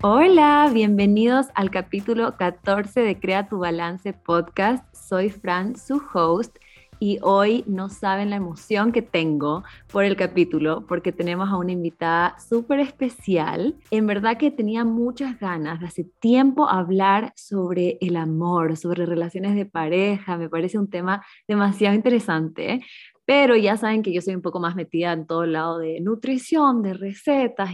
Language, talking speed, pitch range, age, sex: Spanish, 160 wpm, 175-220 Hz, 20-39, female